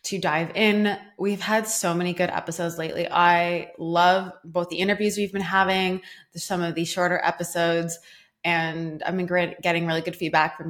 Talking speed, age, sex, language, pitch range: 175 wpm, 20-39, female, English, 165-185 Hz